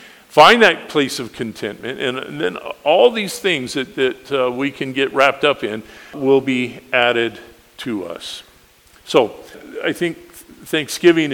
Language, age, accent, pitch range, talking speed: English, 50-69, American, 130-160 Hz, 155 wpm